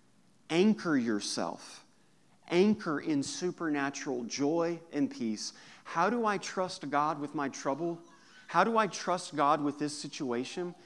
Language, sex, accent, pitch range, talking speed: English, male, American, 140-190 Hz, 135 wpm